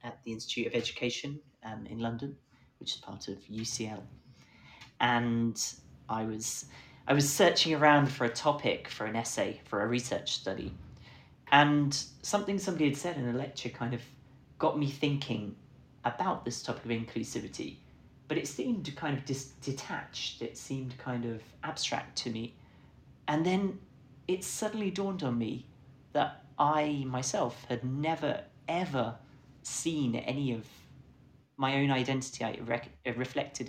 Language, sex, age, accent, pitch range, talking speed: English, male, 30-49, British, 115-140 Hz, 145 wpm